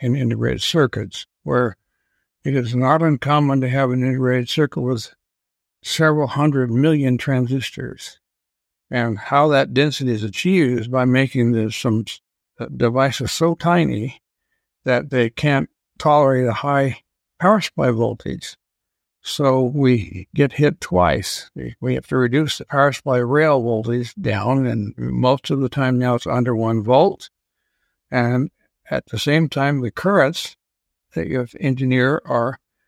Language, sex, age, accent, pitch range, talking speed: English, male, 60-79, American, 120-140 Hz, 140 wpm